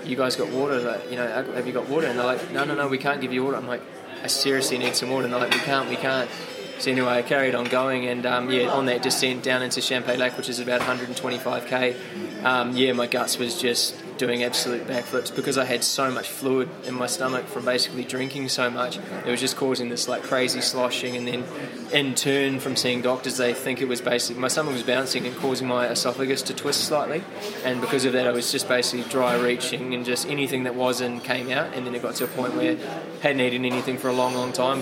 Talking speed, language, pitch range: 250 wpm, English, 125-135 Hz